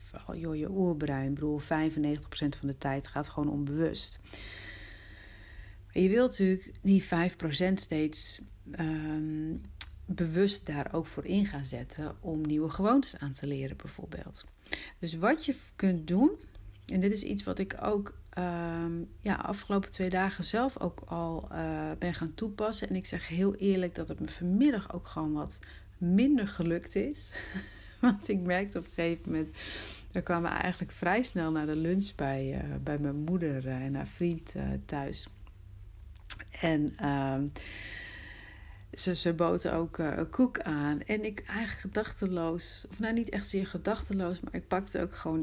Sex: female